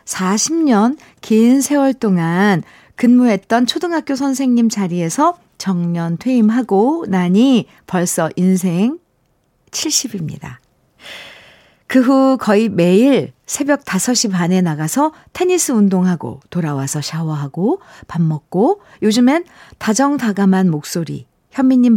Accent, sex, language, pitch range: native, female, Korean, 160-225 Hz